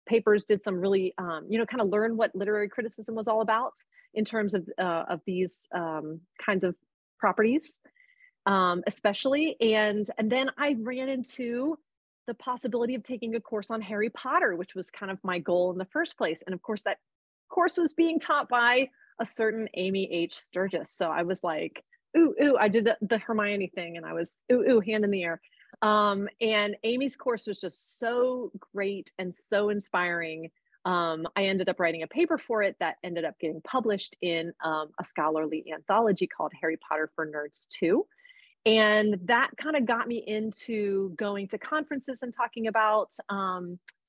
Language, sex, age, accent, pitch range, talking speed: English, female, 30-49, American, 185-245 Hz, 185 wpm